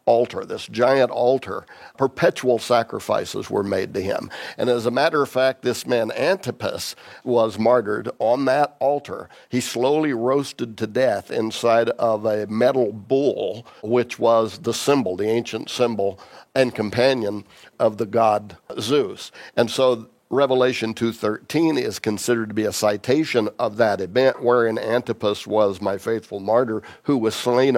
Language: English